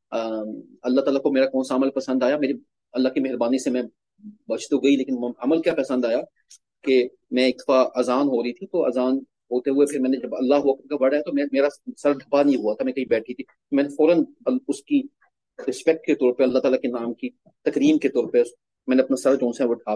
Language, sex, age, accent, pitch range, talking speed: English, male, 30-49, Indian, 125-145 Hz, 130 wpm